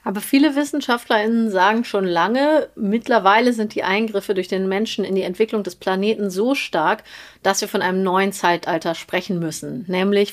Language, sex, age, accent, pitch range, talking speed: German, female, 30-49, German, 185-220 Hz, 170 wpm